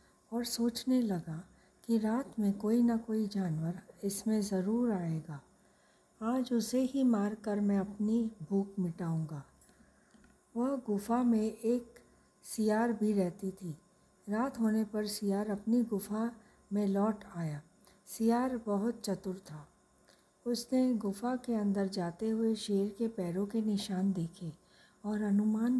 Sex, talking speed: female, 130 wpm